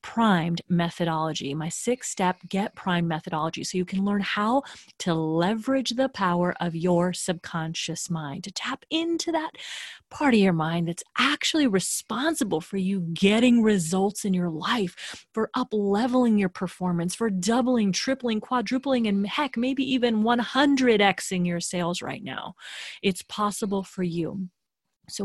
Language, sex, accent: English, female, American